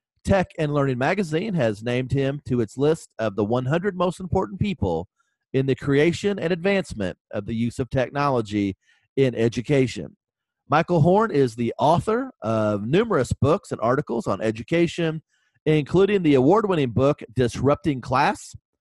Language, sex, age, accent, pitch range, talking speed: English, male, 40-59, American, 125-170 Hz, 145 wpm